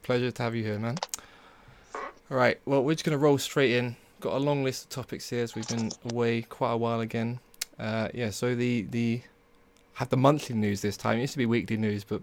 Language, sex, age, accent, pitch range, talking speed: English, male, 20-39, British, 110-130 Hz, 240 wpm